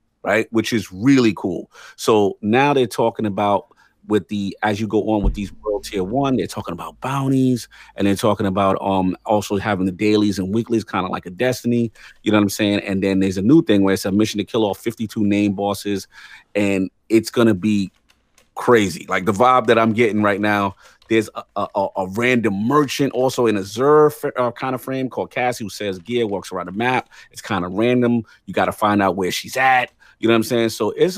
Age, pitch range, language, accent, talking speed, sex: 30-49, 100-130 Hz, English, American, 225 wpm, male